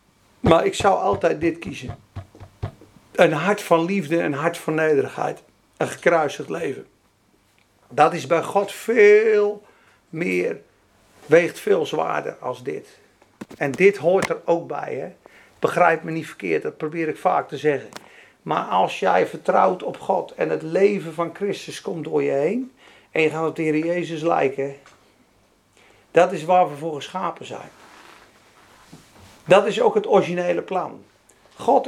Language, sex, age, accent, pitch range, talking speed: Dutch, male, 50-69, Dutch, 165-255 Hz, 150 wpm